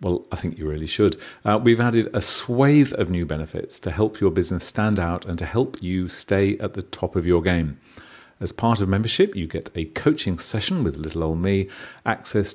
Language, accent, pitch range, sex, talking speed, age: English, British, 85-110 Hz, male, 215 wpm, 40-59